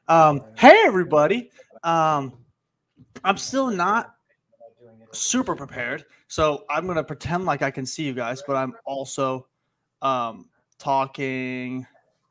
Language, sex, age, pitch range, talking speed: English, male, 20-39, 135-165 Hz, 120 wpm